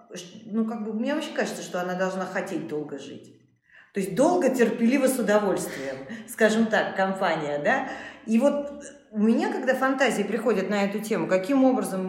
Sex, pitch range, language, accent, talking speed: female, 180-235 Hz, Russian, native, 170 wpm